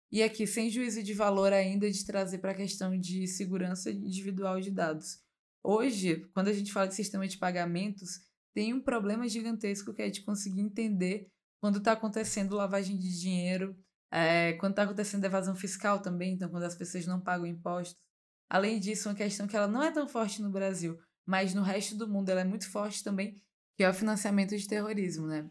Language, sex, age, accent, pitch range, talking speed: Portuguese, female, 20-39, Brazilian, 180-210 Hz, 200 wpm